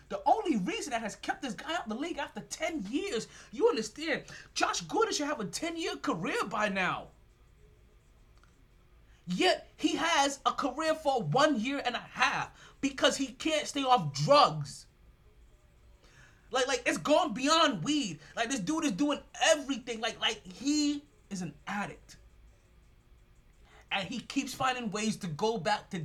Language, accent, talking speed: English, American, 160 wpm